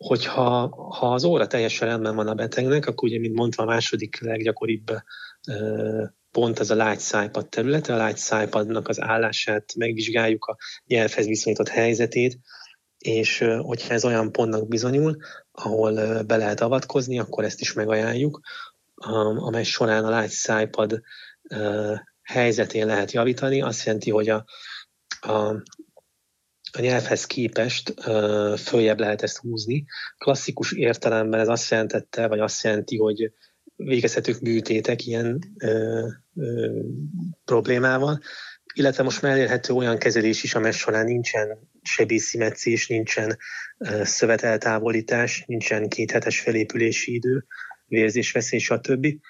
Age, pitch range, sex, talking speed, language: 30-49, 110-120 Hz, male, 125 wpm, Hungarian